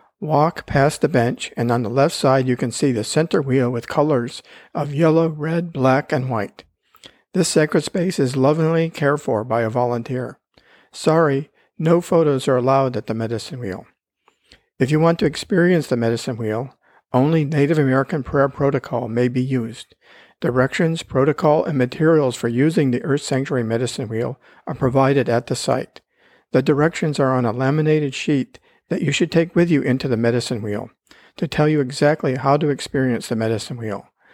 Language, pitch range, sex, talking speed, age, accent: English, 125-155 Hz, male, 175 wpm, 50-69, American